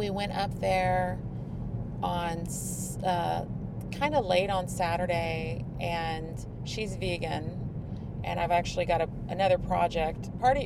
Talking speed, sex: 125 wpm, female